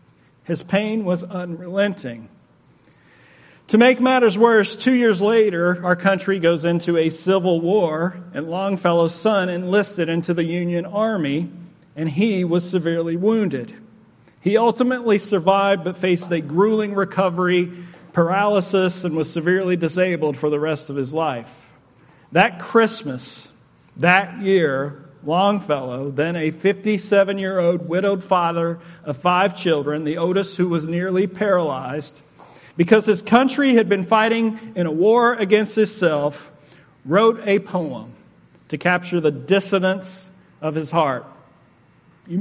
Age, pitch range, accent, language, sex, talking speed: 40-59, 160-200 Hz, American, English, male, 130 wpm